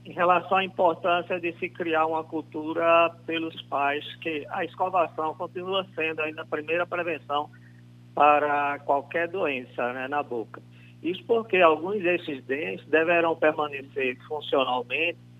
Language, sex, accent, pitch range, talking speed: Portuguese, male, Brazilian, 125-180 Hz, 135 wpm